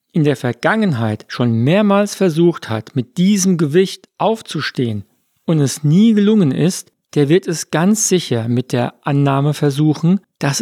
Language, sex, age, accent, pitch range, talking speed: German, male, 50-69, German, 140-185 Hz, 145 wpm